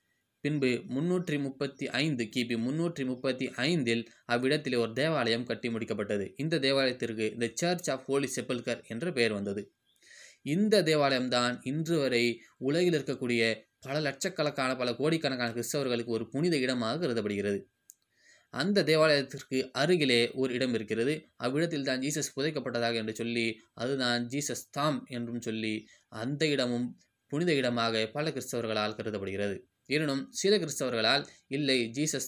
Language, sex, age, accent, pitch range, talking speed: Tamil, male, 20-39, native, 120-145 Hz, 120 wpm